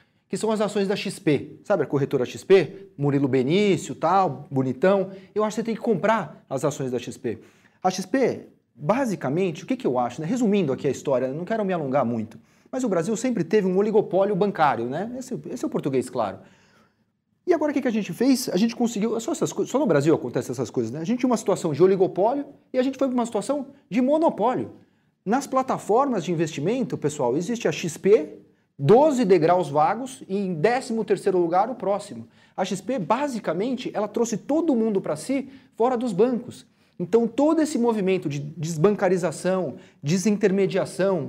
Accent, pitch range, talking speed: Brazilian, 165-225 Hz, 190 wpm